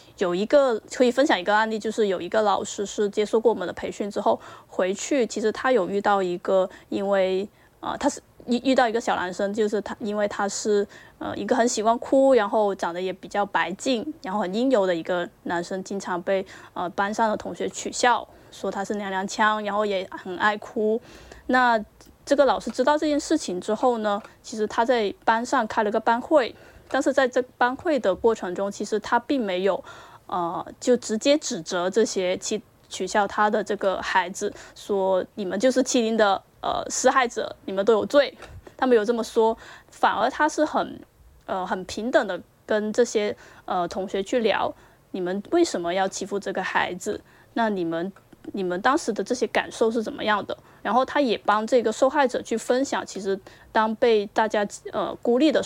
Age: 20-39